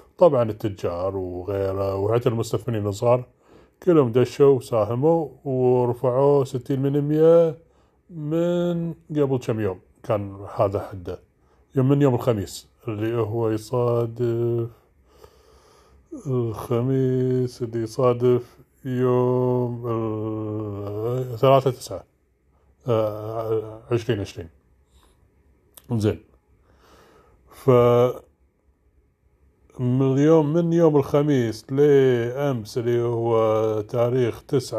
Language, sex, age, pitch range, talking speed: Arabic, male, 30-49, 105-140 Hz, 80 wpm